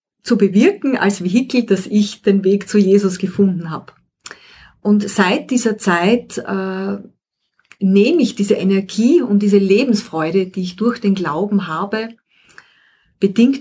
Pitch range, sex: 190-230 Hz, female